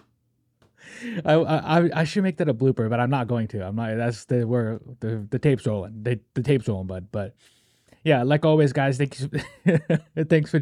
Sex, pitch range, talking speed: male, 120-150 Hz, 190 wpm